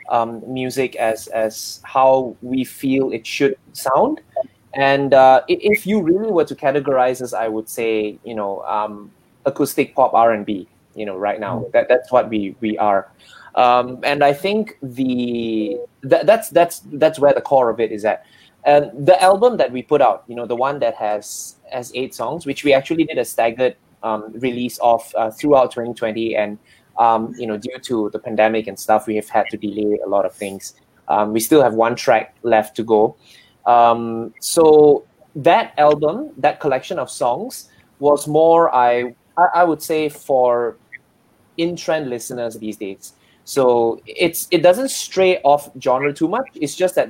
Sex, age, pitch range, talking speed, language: male, 20-39, 115-150 Hz, 180 wpm, English